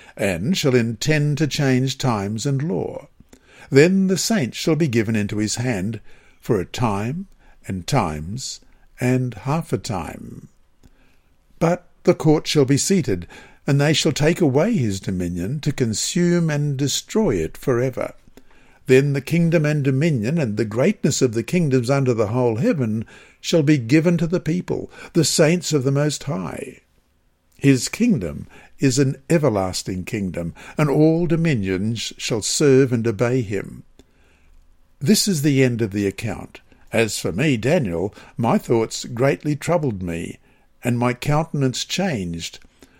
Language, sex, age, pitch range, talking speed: English, male, 60-79, 110-155 Hz, 150 wpm